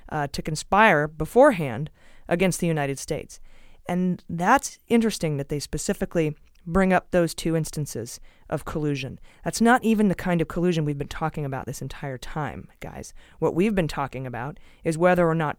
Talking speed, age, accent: 175 wpm, 30-49, American